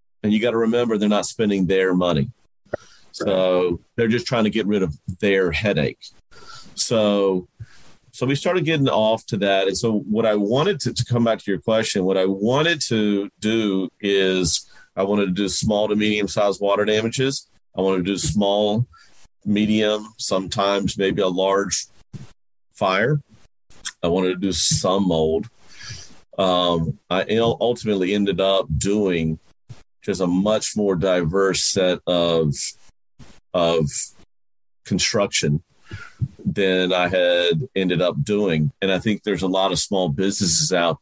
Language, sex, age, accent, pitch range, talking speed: English, male, 40-59, American, 90-105 Hz, 150 wpm